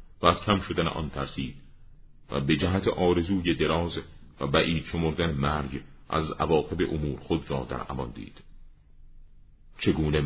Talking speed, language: 135 wpm, Persian